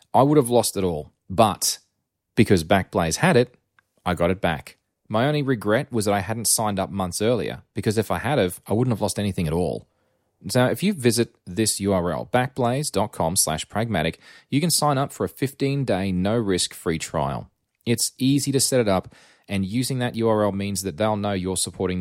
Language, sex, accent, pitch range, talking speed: English, male, Australian, 85-115 Hz, 195 wpm